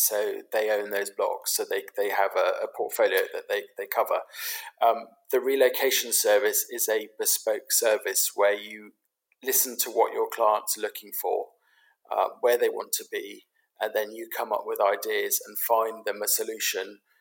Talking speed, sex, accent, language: 180 wpm, male, British, English